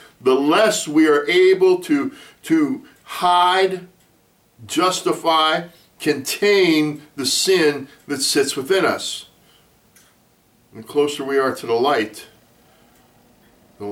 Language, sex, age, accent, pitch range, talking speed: English, male, 50-69, American, 105-165 Hz, 105 wpm